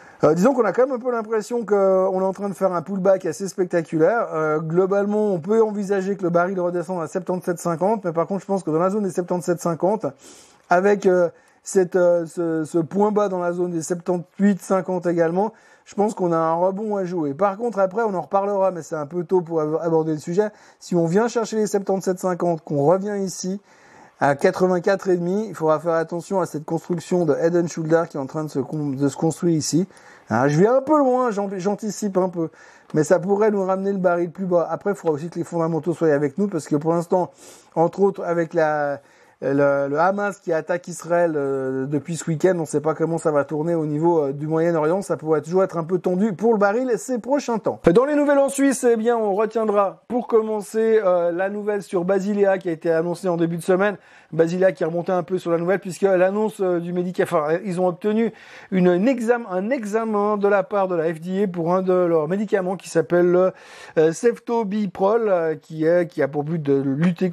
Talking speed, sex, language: 220 wpm, male, French